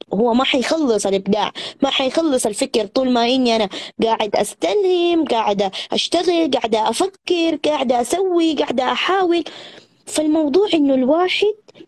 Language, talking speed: Arabic, 120 wpm